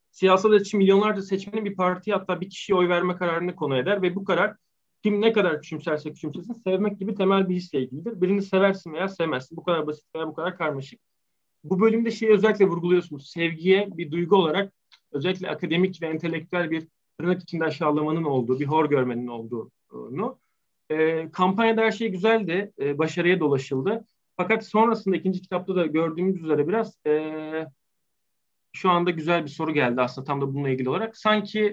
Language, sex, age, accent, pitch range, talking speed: Turkish, male, 40-59, native, 150-195 Hz, 170 wpm